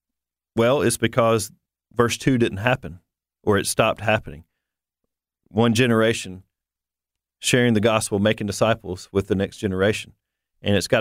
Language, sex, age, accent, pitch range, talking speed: English, male, 40-59, American, 100-130 Hz, 135 wpm